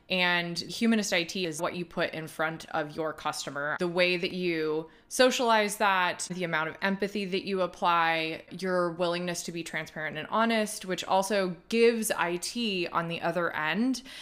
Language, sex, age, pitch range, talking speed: English, female, 20-39, 165-205 Hz, 170 wpm